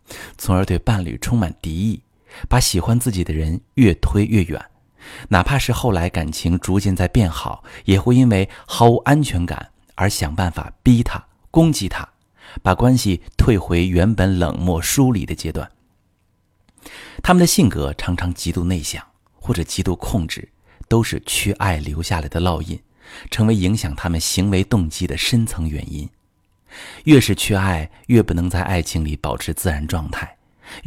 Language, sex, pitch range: Chinese, male, 85-115 Hz